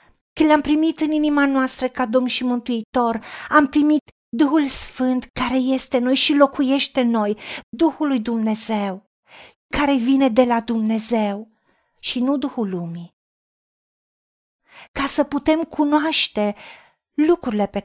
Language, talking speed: Romanian, 130 wpm